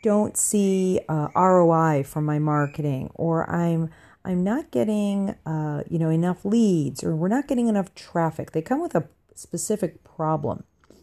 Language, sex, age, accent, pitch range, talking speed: English, female, 40-59, American, 150-200 Hz, 160 wpm